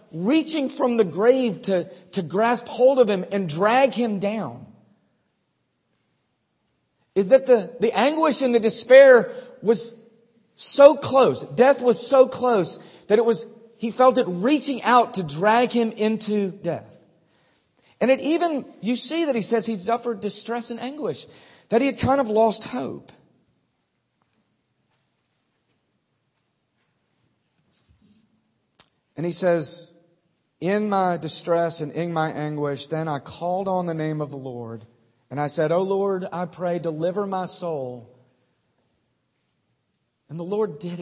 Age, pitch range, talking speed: 40-59, 175-245 Hz, 140 wpm